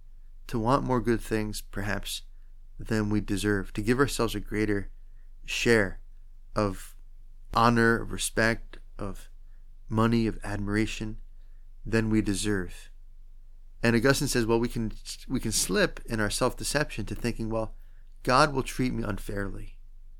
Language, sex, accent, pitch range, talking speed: English, male, American, 105-120 Hz, 140 wpm